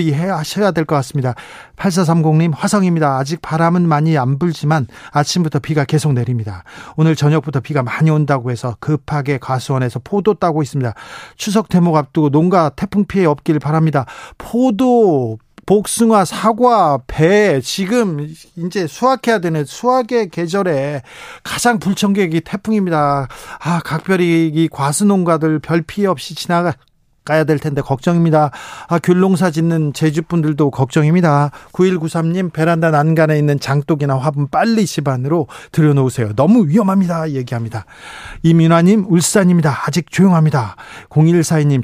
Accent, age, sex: native, 40-59, male